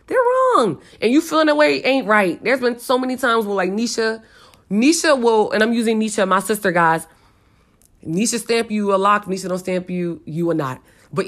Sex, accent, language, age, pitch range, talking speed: female, American, English, 20-39, 170-220 Hz, 205 wpm